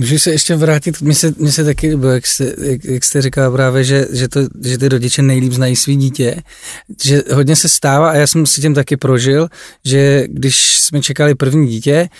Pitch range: 135-155 Hz